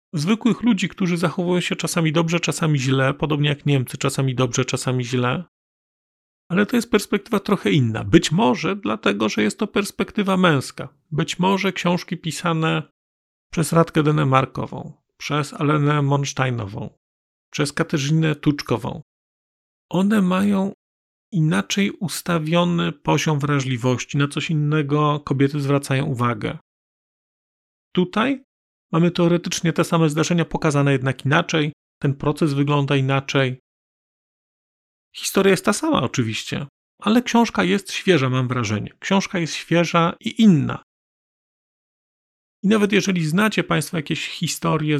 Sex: male